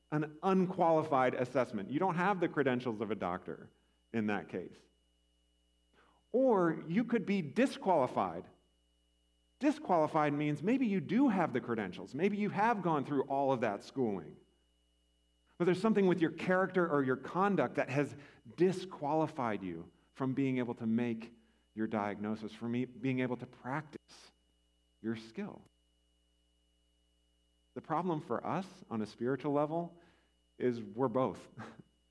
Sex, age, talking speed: male, 40-59, 140 wpm